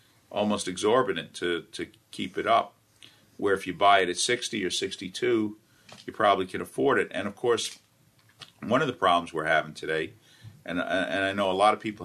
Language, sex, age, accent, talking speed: English, male, 50-69, American, 195 wpm